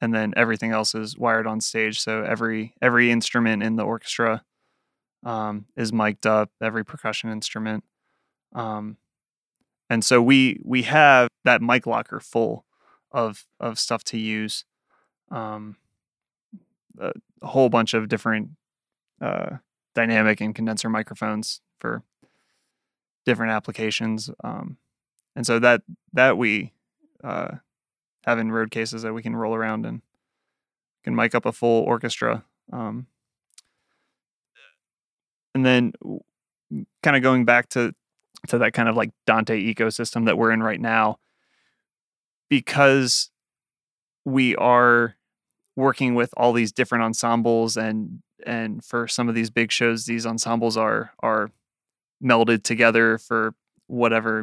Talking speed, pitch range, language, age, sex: 130 wpm, 110-120 Hz, English, 20-39, male